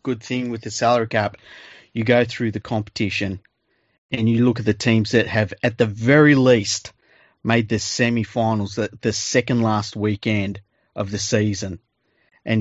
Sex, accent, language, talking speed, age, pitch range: male, Australian, English, 165 wpm, 30-49, 110-130 Hz